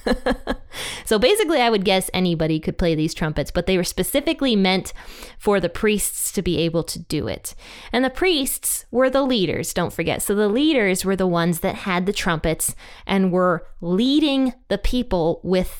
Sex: female